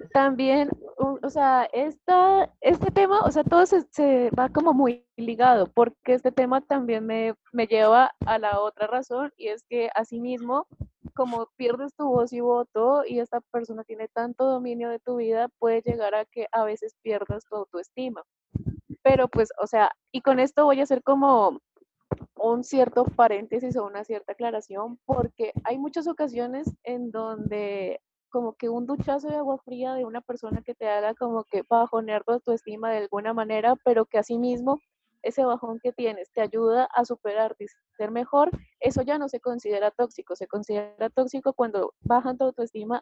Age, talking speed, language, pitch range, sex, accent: 20-39, 175 wpm, Spanish, 220-260 Hz, female, Colombian